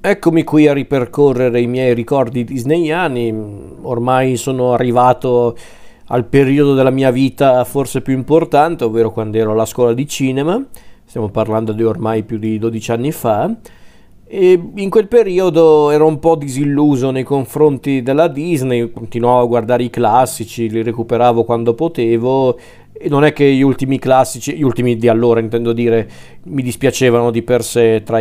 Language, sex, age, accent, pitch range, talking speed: Italian, male, 40-59, native, 120-135 Hz, 155 wpm